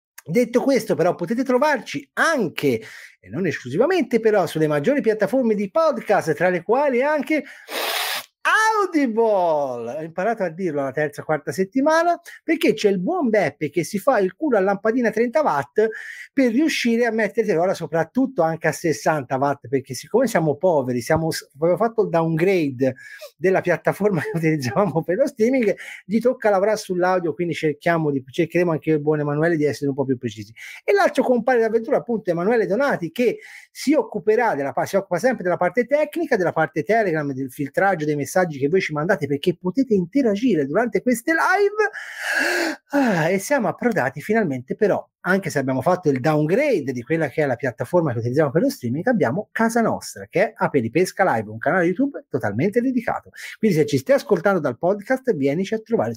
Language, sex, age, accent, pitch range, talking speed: Italian, male, 30-49, native, 155-245 Hz, 175 wpm